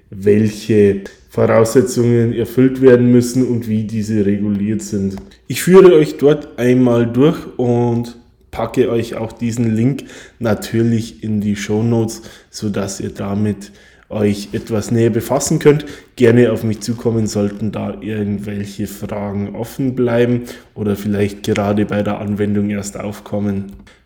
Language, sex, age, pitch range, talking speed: German, male, 20-39, 105-125 Hz, 130 wpm